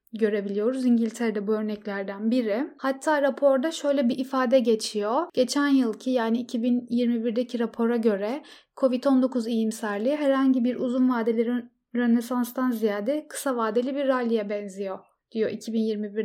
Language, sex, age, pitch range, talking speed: Turkish, female, 10-29, 225-265 Hz, 120 wpm